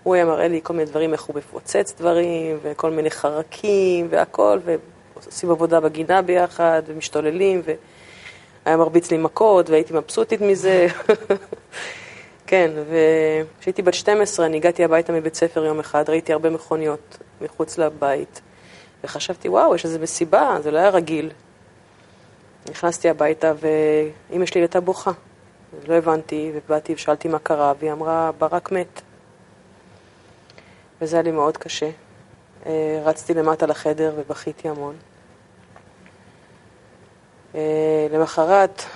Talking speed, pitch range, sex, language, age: 120 wpm, 155-175 Hz, female, Hebrew, 30-49